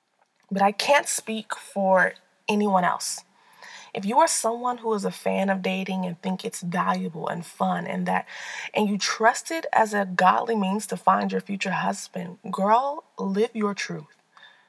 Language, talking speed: English, 170 wpm